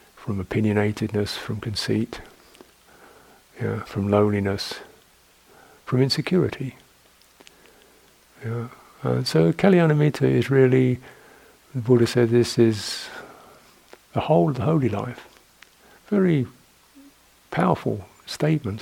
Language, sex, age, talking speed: English, male, 60-79, 90 wpm